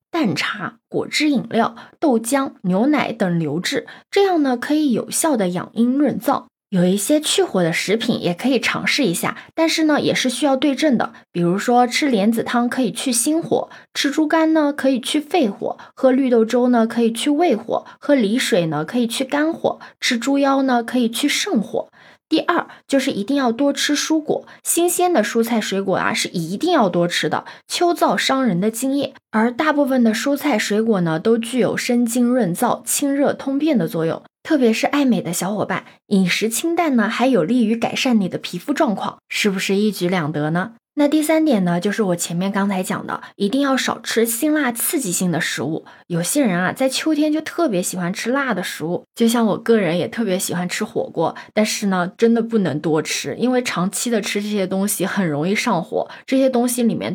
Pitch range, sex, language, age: 195-275 Hz, female, Chinese, 20-39